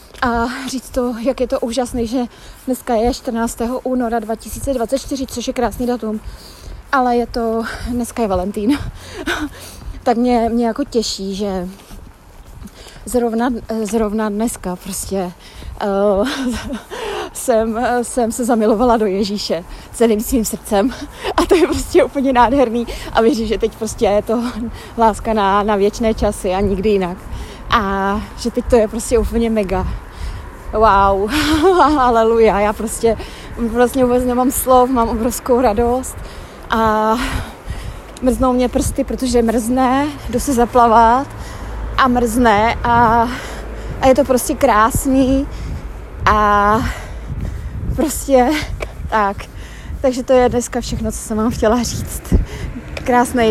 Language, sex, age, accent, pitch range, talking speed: Czech, female, 30-49, native, 220-255 Hz, 130 wpm